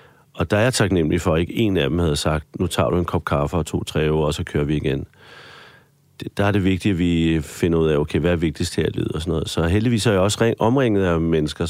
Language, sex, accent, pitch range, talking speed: Danish, male, native, 90-115 Hz, 275 wpm